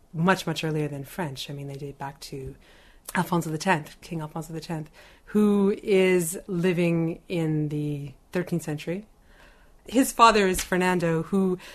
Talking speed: 145 wpm